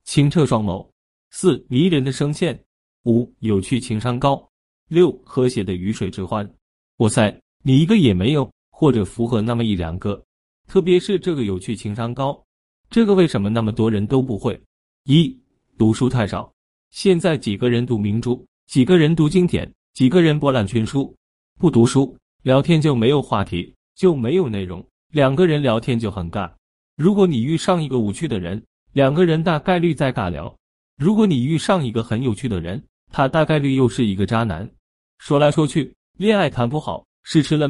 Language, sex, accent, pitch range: Chinese, male, native, 105-155 Hz